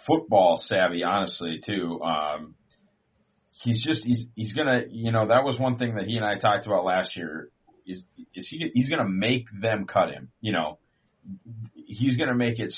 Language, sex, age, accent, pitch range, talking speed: English, male, 40-59, American, 105-135 Hz, 195 wpm